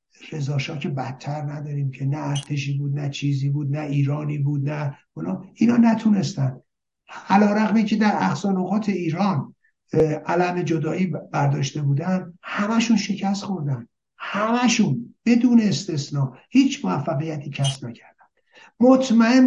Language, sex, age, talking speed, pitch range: Persian, male, 60-79, 120 wpm, 140-205 Hz